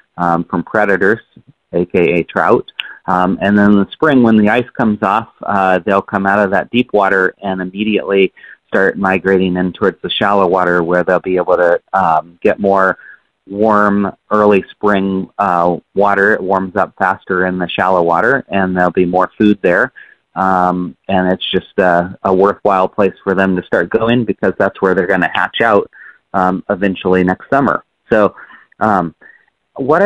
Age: 30-49